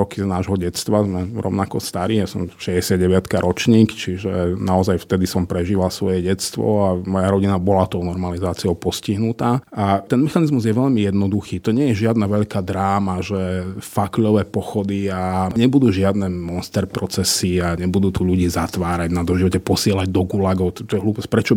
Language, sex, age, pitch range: Slovak, male, 30-49, 95-110 Hz